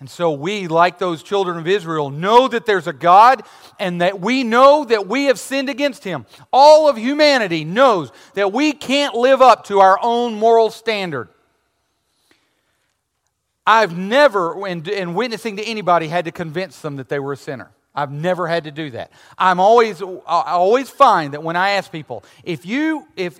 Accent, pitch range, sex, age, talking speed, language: American, 165-235 Hz, male, 40-59, 180 wpm, English